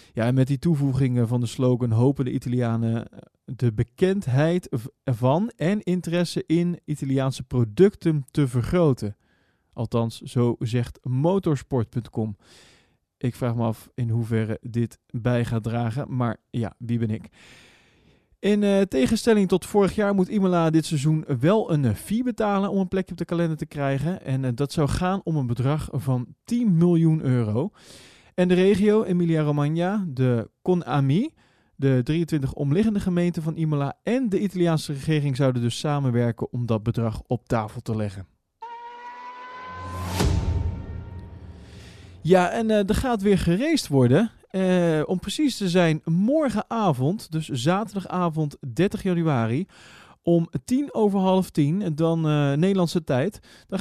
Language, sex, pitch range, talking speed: Dutch, male, 120-185 Hz, 145 wpm